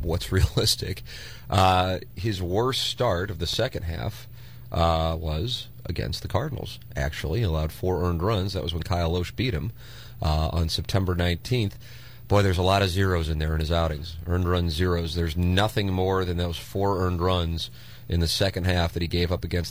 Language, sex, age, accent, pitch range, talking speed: English, male, 30-49, American, 90-115 Hz, 190 wpm